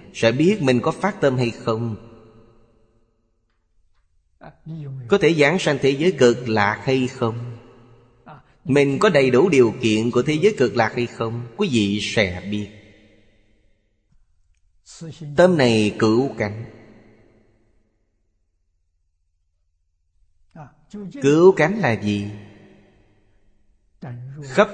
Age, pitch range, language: 30-49, 105-135 Hz, Vietnamese